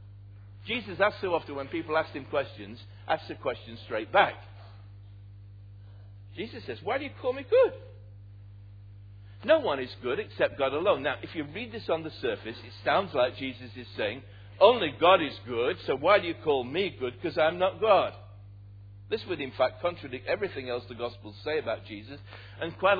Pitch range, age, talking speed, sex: 100-170 Hz, 60-79, 190 wpm, male